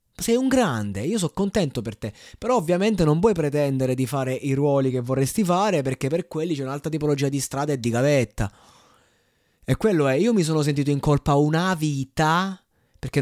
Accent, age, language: native, 20-39, Italian